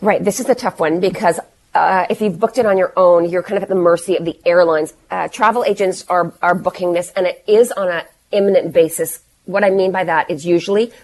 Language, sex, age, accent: English, female, 30-49, American